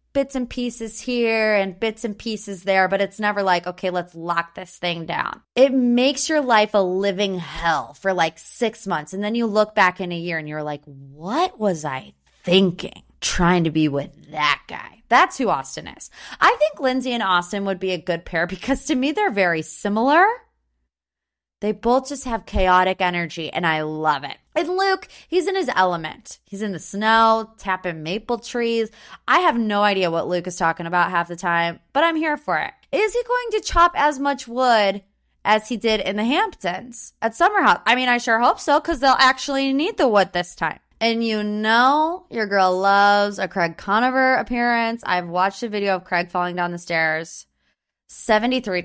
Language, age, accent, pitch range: English, 20-39, American, 175-245 Hz